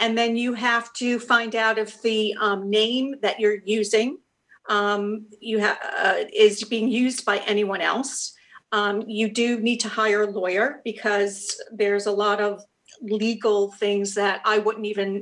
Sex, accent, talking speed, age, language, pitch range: female, American, 160 wpm, 50-69, English, 205-230 Hz